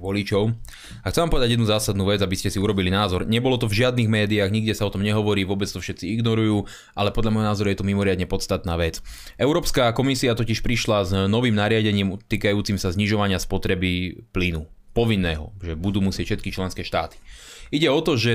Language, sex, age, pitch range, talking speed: Slovak, male, 20-39, 95-120 Hz, 195 wpm